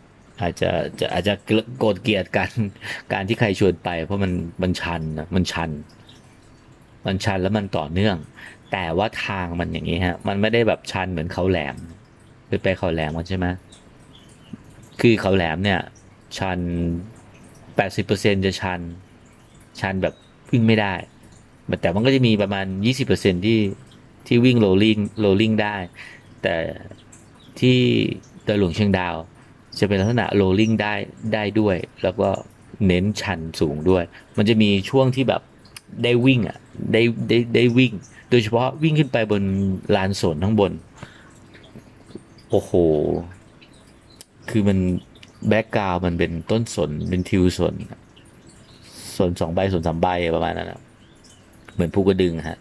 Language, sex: English, male